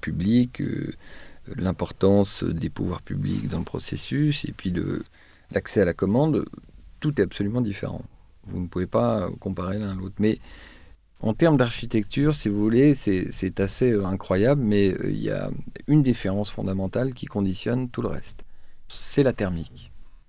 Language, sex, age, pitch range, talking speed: French, male, 40-59, 95-120 Hz, 155 wpm